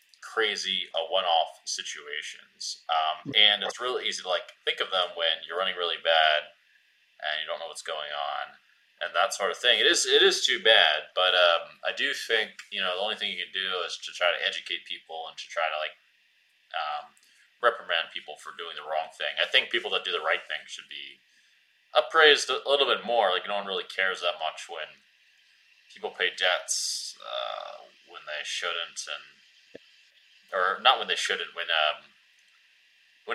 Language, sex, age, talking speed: English, male, 20-39, 195 wpm